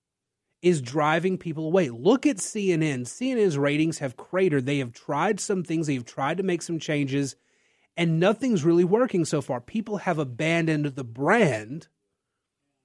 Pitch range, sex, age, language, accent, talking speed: 145-190 Hz, male, 30-49, English, American, 160 wpm